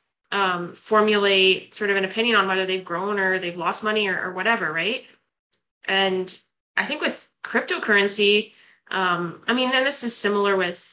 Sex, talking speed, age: female, 170 wpm, 20-39